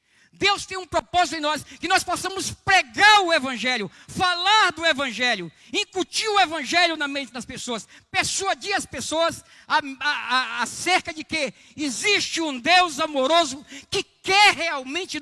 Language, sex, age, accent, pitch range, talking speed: Portuguese, male, 50-69, Brazilian, 210-330 Hz, 140 wpm